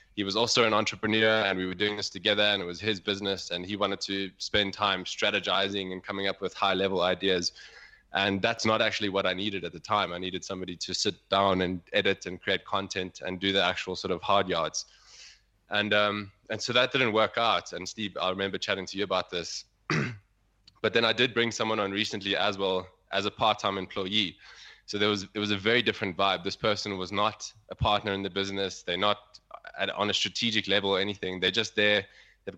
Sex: male